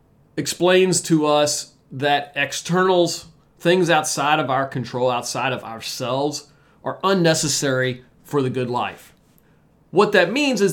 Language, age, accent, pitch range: English, 40-59, American, 130-170 Hz